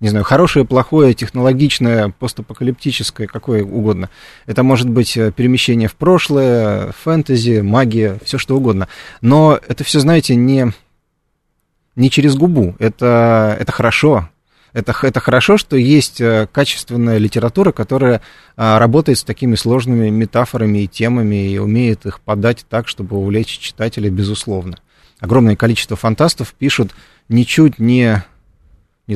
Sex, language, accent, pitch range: male, Russian, native, 105-135 Hz